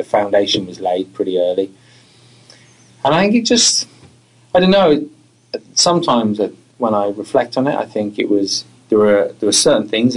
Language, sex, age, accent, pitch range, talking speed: English, male, 20-39, British, 100-130 Hz, 170 wpm